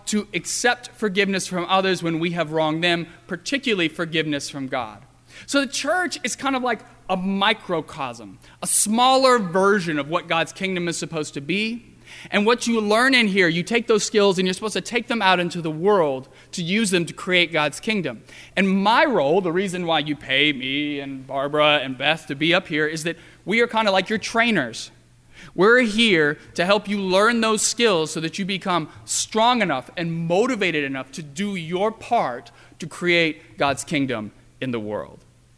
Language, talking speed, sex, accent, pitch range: English, 195 wpm, male, American, 145-205 Hz